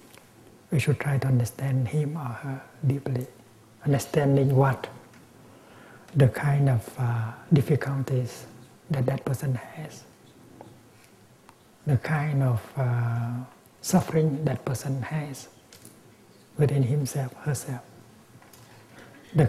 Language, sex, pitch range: English, male, 125-155 Hz